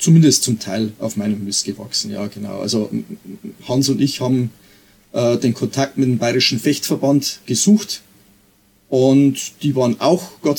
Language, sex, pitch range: German, male, 110-145 Hz